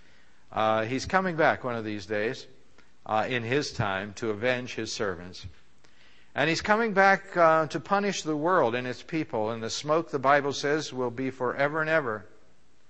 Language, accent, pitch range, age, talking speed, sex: English, American, 115-145 Hz, 60-79, 180 wpm, male